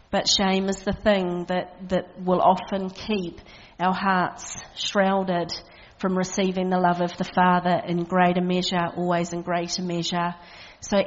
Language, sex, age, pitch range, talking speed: English, female, 40-59, 175-195 Hz, 150 wpm